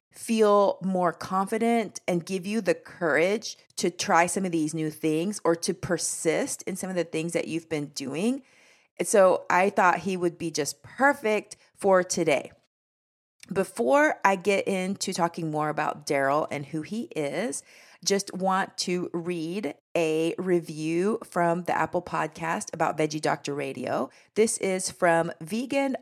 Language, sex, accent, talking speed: English, female, American, 155 wpm